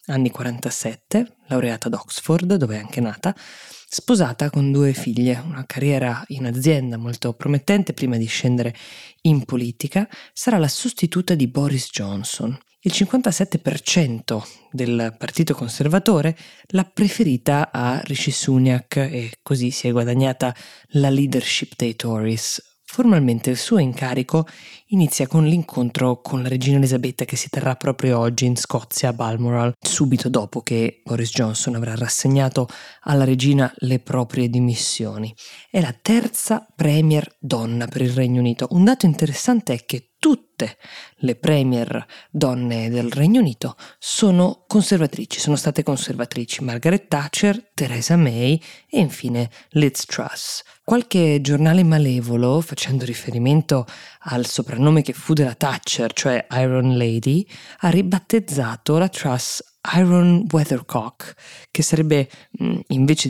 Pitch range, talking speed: 125-160 Hz, 130 wpm